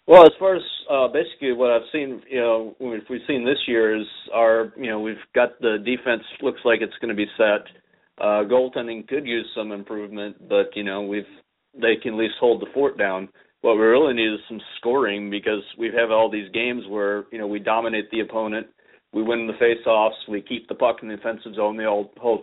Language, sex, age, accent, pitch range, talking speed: English, male, 40-59, American, 105-115 Hz, 220 wpm